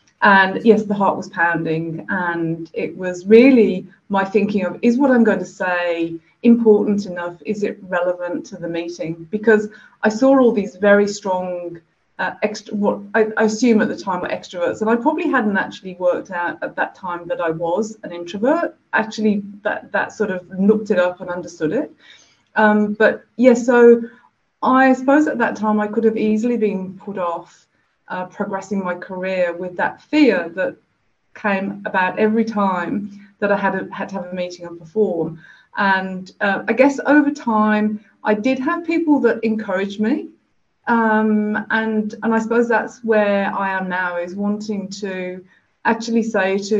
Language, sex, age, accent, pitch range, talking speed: English, female, 30-49, British, 185-225 Hz, 180 wpm